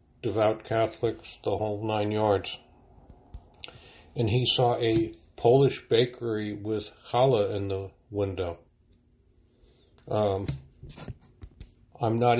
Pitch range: 105-120 Hz